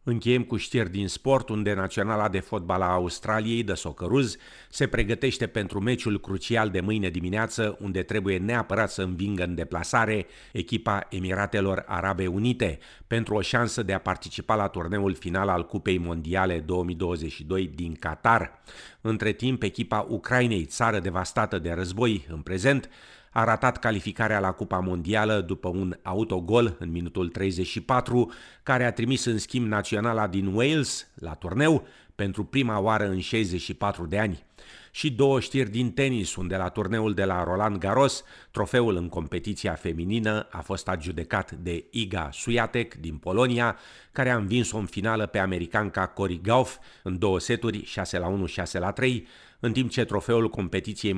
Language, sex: Romanian, male